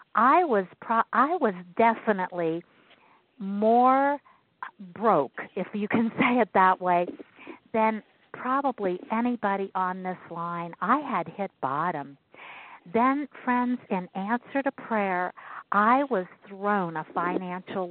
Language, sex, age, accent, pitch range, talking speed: English, female, 50-69, American, 180-245 Hz, 120 wpm